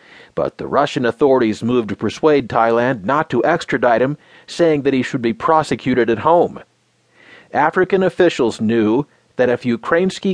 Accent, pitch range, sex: American, 120-170 Hz, male